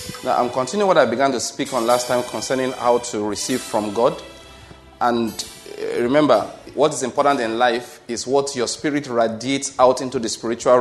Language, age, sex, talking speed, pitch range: English, 30-49, male, 185 wpm, 120-150 Hz